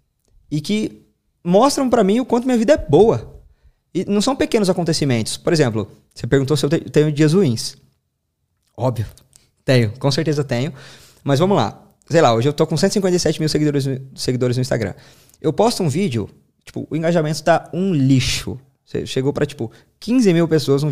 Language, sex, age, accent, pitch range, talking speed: Portuguese, male, 20-39, Brazilian, 125-170 Hz, 180 wpm